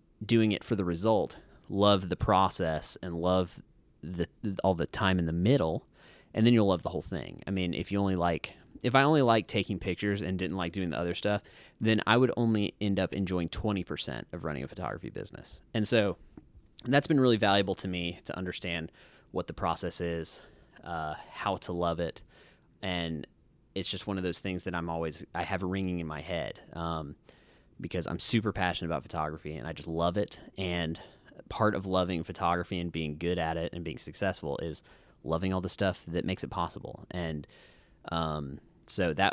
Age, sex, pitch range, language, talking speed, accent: 20-39, male, 85-100 Hz, English, 200 wpm, American